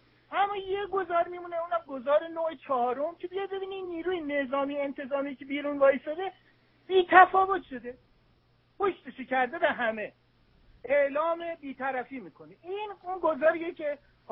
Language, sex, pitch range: English, male, 230-320 Hz